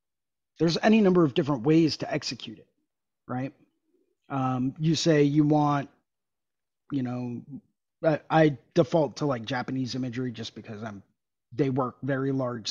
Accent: American